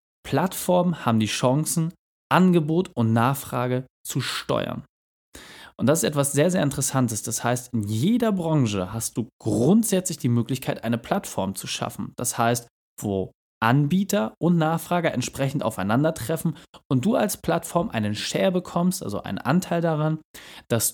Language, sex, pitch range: German, male, 120-160 Hz